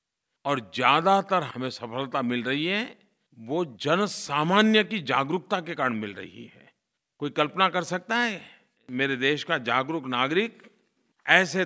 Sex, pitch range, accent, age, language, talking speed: male, 130-180 Hz, native, 50-69, Hindi, 145 wpm